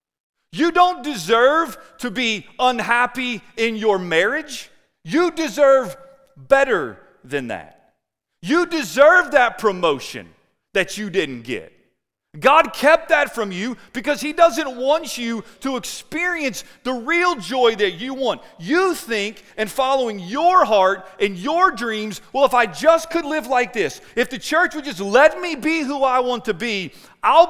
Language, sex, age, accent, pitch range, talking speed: English, male, 40-59, American, 185-290 Hz, 155 wpm